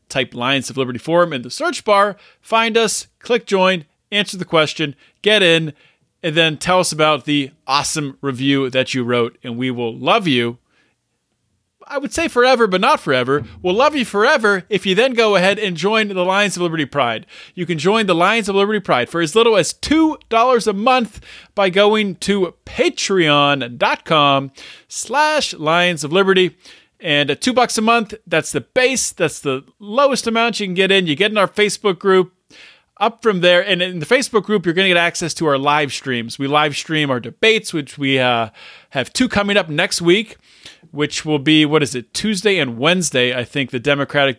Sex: male